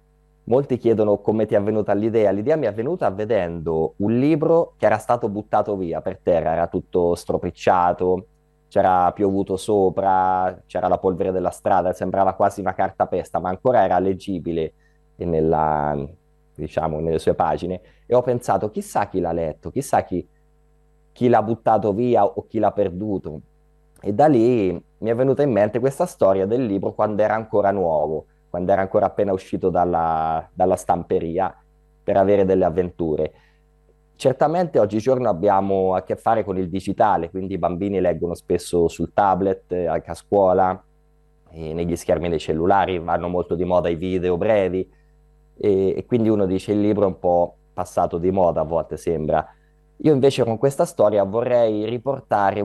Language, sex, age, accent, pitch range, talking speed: Italian, male, 20-39, native, 90-125 Hz, 165 wpm